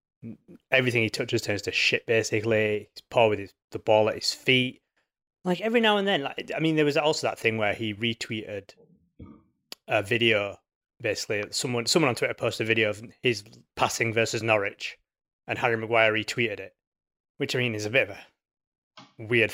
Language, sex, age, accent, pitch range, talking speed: English, male, 20-39, British, 110-155 Hz, 185 wpm